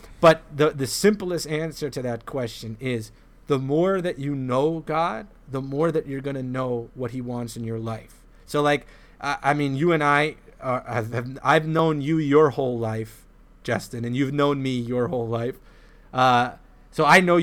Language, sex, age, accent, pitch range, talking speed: English, male, 30-49, American, 125-155 Hz, 195 wpm